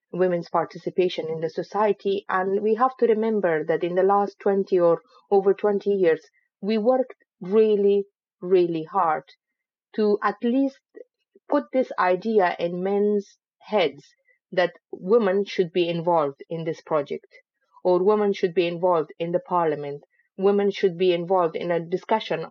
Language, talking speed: English, 150 wpm